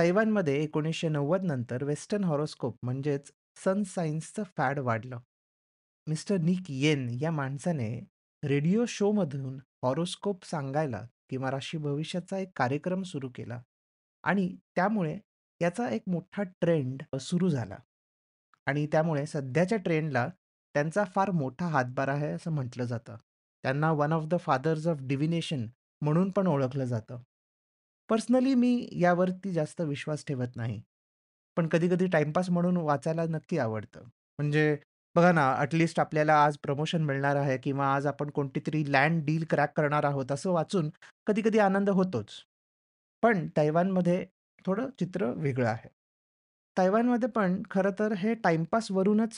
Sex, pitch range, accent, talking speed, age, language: male, 140-185 Hz, native, 130 wpm, 30-49, Marathi